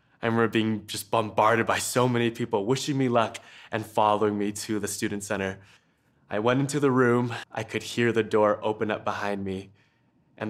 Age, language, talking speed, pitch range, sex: 20-39, English, 195 wpm, 100-120 Hz, male